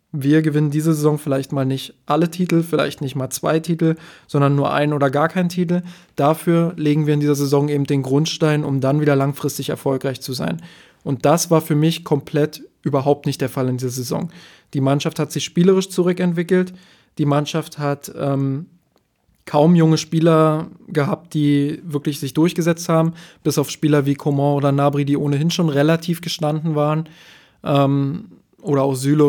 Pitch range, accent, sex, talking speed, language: 140-160 Hz, German, male, 175 wpm, German